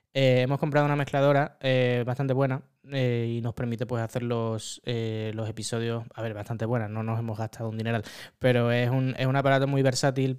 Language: Spanish